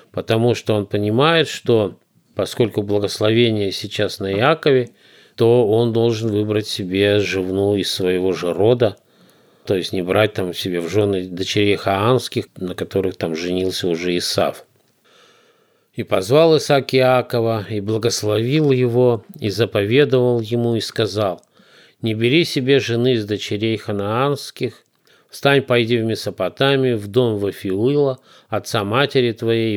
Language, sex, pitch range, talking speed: Russian, male, 100-125 Hz, 130 wpm